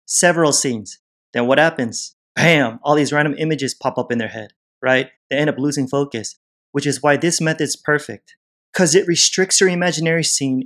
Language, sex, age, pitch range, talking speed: English, male, 30-49, 130-160 Hz, 185 wpm